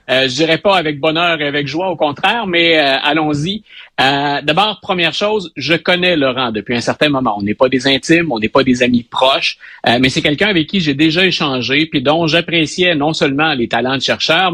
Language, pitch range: French, 135-175 Hz